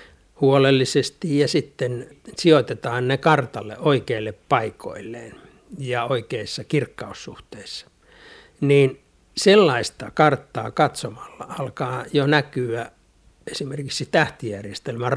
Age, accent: 60-79, native